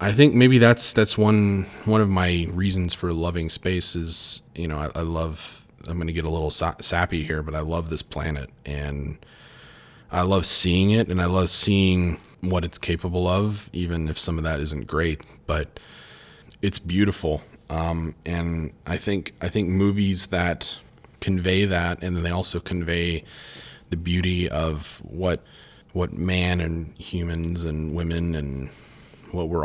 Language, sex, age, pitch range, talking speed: English, male, 30-49, 80-95 Hz, 170 wpm